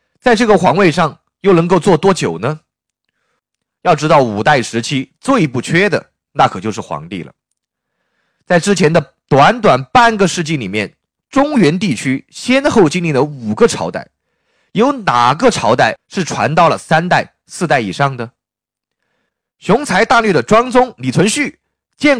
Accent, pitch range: native, 145-225 Hz